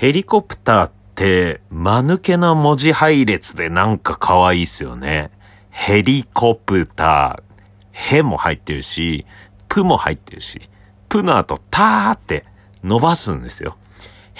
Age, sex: 40-59, male